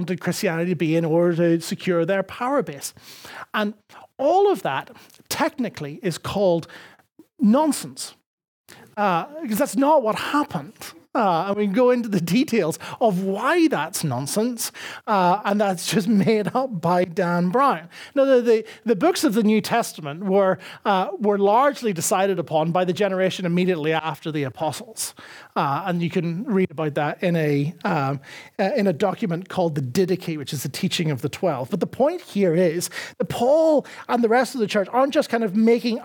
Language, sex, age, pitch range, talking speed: English, male, 30-49, 175-235 Hz, 180 wpm